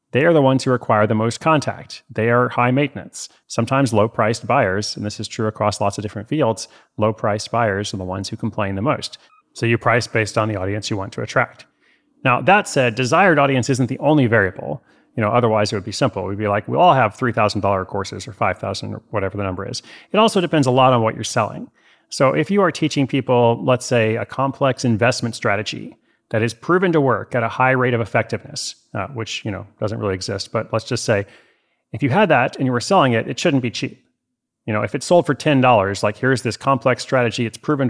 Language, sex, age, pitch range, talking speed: English, male, 30-49, 110-130 Hz, 230 wpm